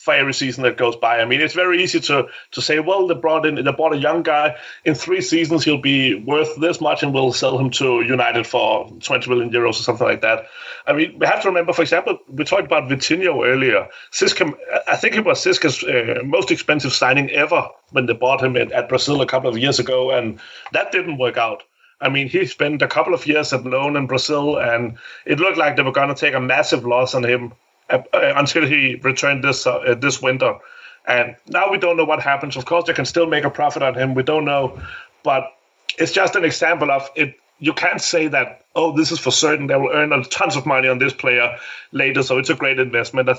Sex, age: male, 30-49